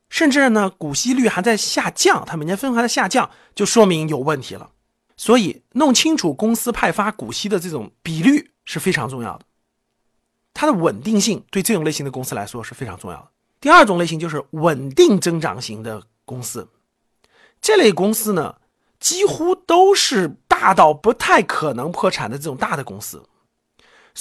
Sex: male